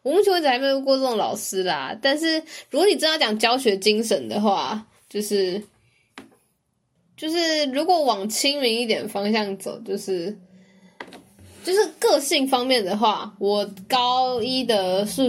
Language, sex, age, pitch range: Chinese, female, 10-29, 195-255 Hz